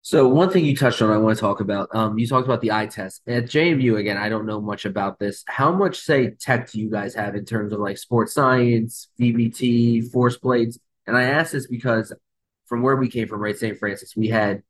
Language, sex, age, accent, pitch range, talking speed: English, male, 20-39, American, 105-120 Hz, 240 wpm